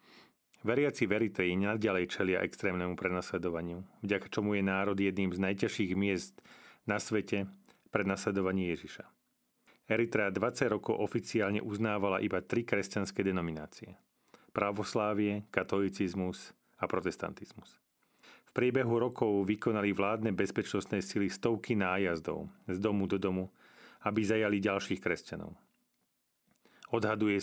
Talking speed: 110 wpm